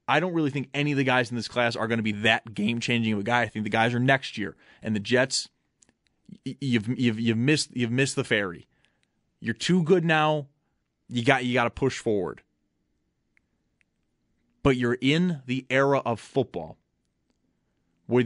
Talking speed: 185 wpm